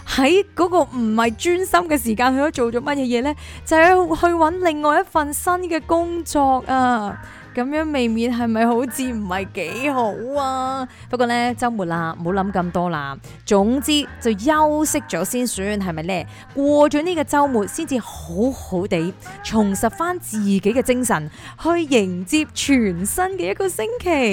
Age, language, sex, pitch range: 20-39, Chinese, female, 190-285 Hz